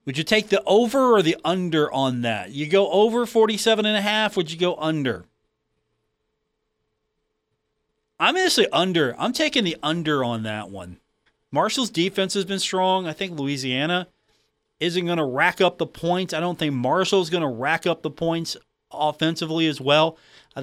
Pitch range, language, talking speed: 135-180 Hz, English, 170 wpm